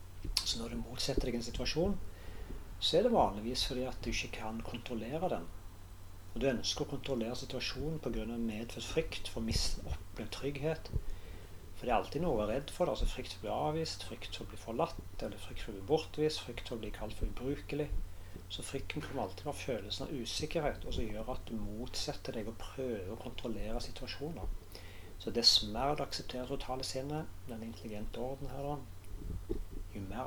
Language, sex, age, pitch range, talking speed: English, male, 40-59, 90-120 Hz, 180 wpm